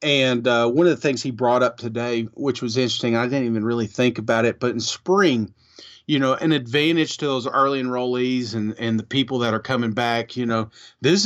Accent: American